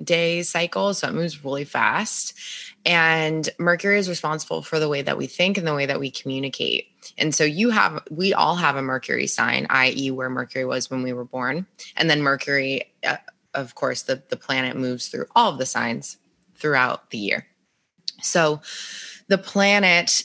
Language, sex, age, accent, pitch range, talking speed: English, female, 20-39, American, 135-170 Hz, 180 wpm